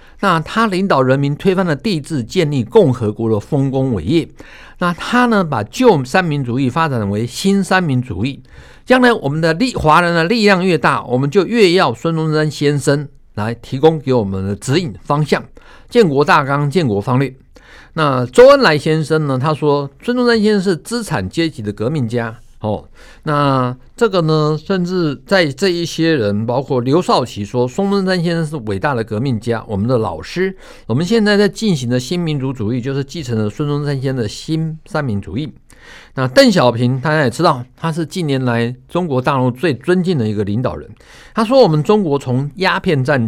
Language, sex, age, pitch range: Chinese, male, 60-79, 125-175 Hz